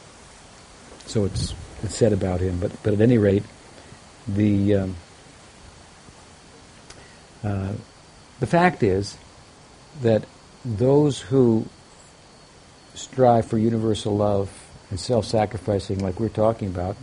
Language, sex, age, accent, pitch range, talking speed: English, male, 60-79, American, 95-120 Hz, 105 wpm